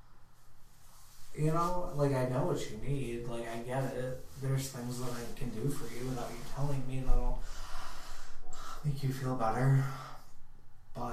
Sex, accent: male, American